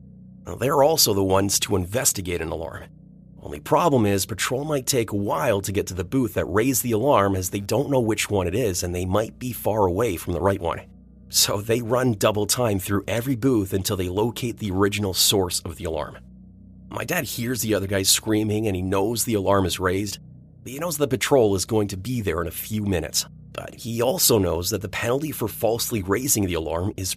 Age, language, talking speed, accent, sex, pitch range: 30-49, English, 225 wpm, American, male, 95-120 Hz